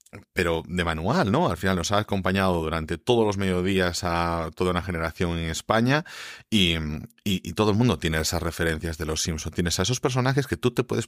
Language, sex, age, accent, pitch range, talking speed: Spanish, male, 30-49, Spanish, 85-110 Hz, 210 wpm